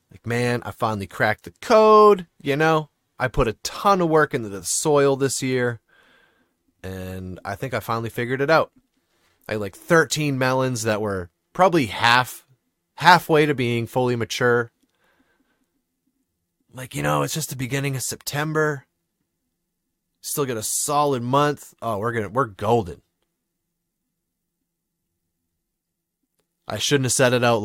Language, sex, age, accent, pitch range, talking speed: English, male, 30-49, American, 110-150 Hz, 145 wpm